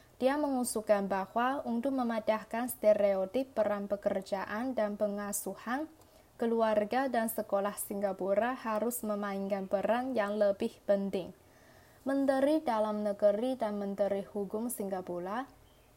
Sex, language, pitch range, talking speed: female, Indonesian, 200-240 Hz, 100 wpm